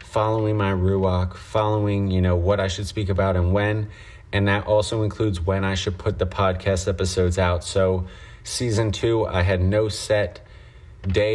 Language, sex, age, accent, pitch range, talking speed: English, male, 30-49, American, 95-105 Hz, 175 wpm